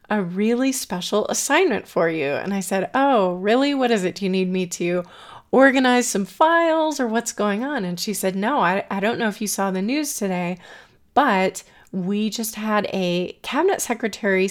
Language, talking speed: English, 195 wpm